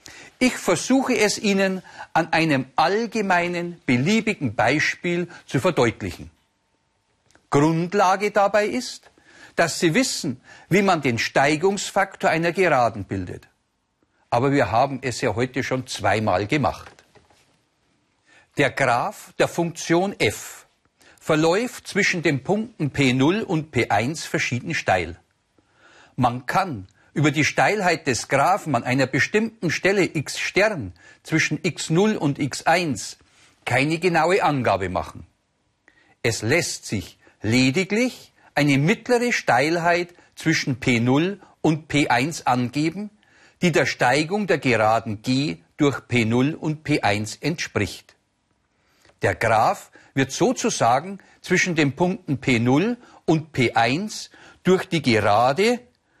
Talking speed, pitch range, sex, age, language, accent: 110 wpm, 130-190 Hz, male, 50-69, German, German